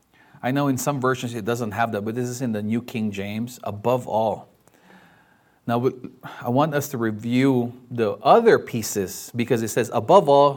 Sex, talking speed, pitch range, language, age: male, 185 wpm, 115-145 Hz, English, 30-49